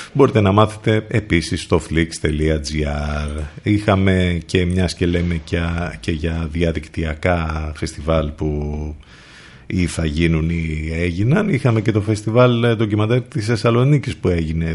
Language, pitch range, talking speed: Greek, 80-105 Hz, 115 wpm